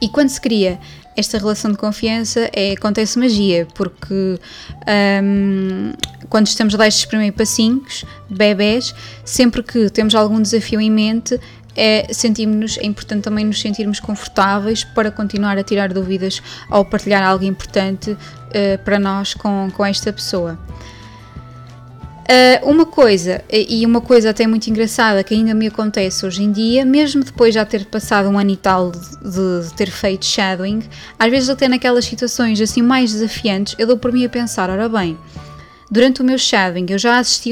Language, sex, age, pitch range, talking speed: Portuguese, female, 20-39, 195-235 Hz, 160 wpm